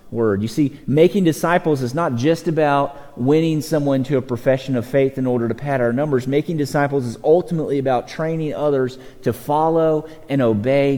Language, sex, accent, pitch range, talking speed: English, male, American, 130-175 Hz, 180 wpm